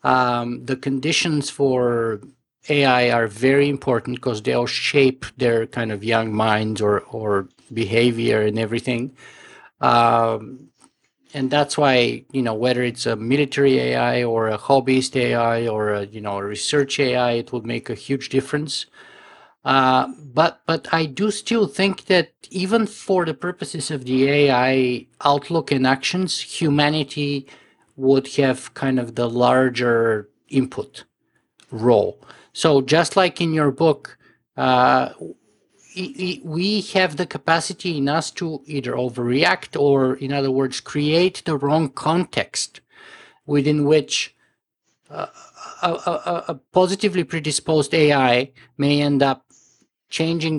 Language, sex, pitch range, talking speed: English, male, 120-150 Hz, 135 wpm